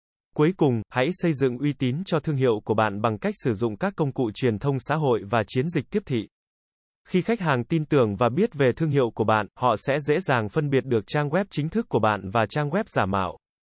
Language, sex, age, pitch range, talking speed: Vietnamese, male, 20-39, 120-160 Hz, 255 wpm